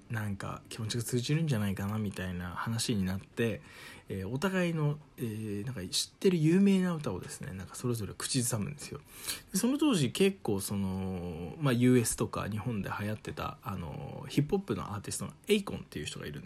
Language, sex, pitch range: Japanese, male, 100-155 Hz